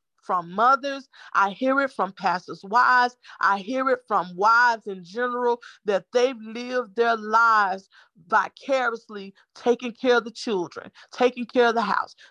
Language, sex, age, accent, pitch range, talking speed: English, female, 40-59, American, 230-305 Hz, 150 wpm